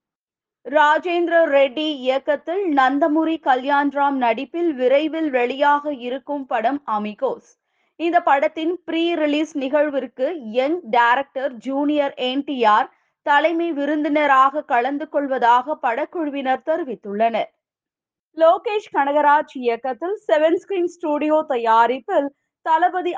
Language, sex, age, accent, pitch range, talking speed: Tamil, female, 20-39, native, 265-325 Hz, 90 wpm